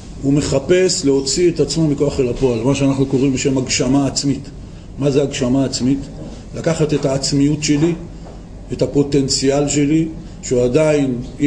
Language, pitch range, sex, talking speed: Hebrew, 135-170 Hz, male, 145 wpm